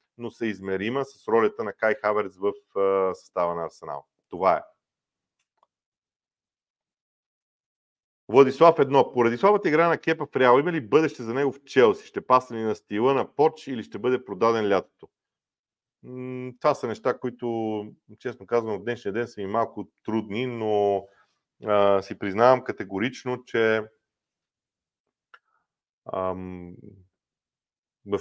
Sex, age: male, 40-59